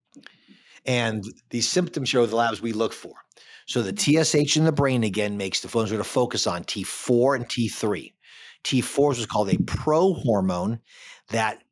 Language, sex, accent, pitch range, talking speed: English, male, American, 110-140 Hz, 190 wpm